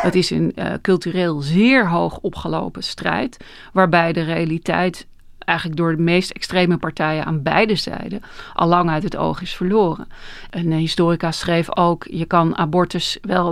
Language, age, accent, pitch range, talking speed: Dutch, 40-59, Dutch, 165-195 Hz, 160 wpm